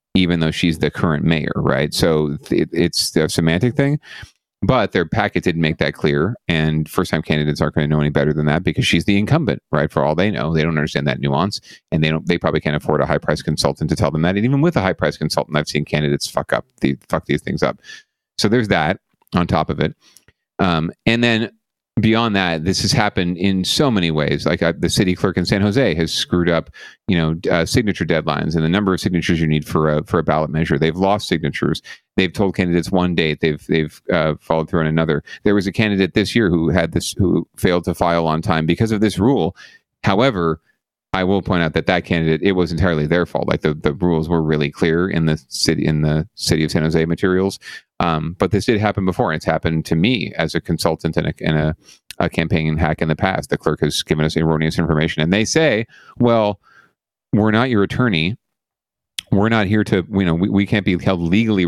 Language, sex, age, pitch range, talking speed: English, male, 40-59, 80-95 Hz, 230 wpm